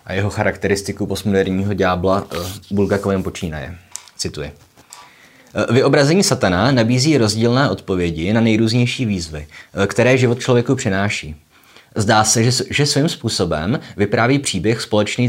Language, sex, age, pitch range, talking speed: Czech, male, 20-39, 100-125 Hz, 110 wpm